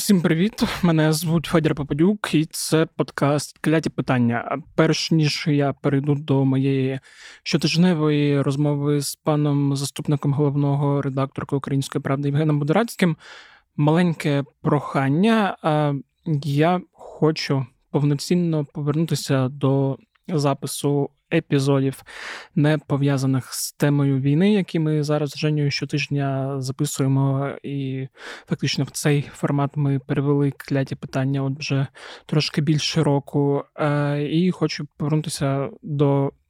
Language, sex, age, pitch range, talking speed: Ukrainian, male, 20-39, 140-160 Hz, 110 wpm